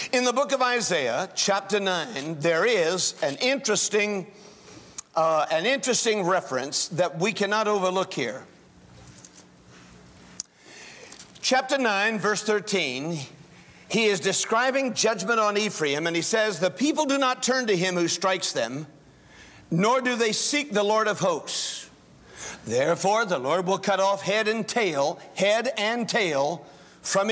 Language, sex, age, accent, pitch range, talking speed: English, male, 50-69, American, 185-250 Hz, 140 wpm